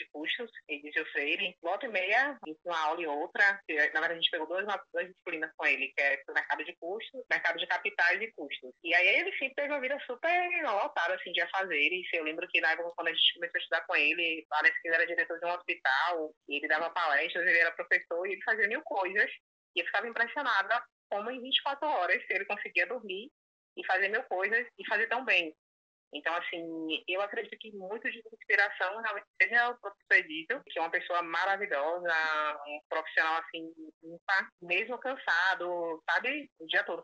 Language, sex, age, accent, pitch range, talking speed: Portuguese, female, 20-39, Brazilian, 165-225 Hz, 205 wpm